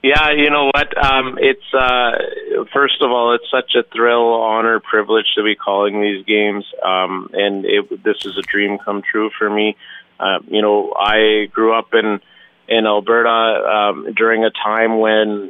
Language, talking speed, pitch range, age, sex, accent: English, 180 wpm, 105-145 Hz, 30-49, male, American